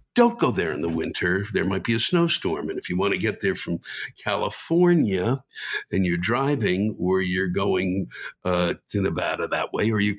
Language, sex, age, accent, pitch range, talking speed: English, male, 60-79, American, 100-135 Hz, 195 wpm